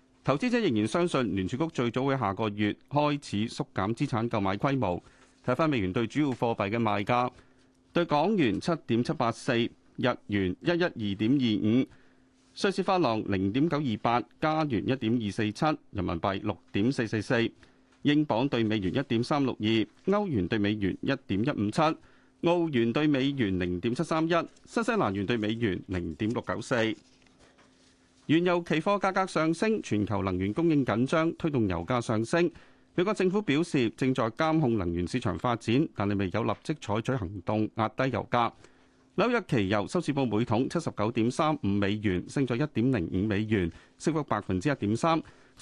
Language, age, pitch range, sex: Chinese, 30-49, 105-150 Hz, male